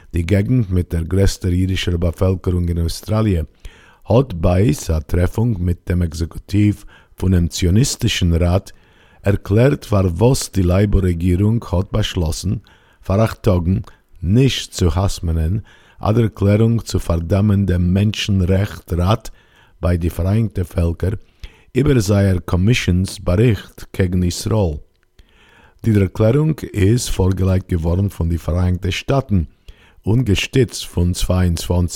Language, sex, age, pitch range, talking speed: English, male, 50-69, 85-105 Hz, 110 wpm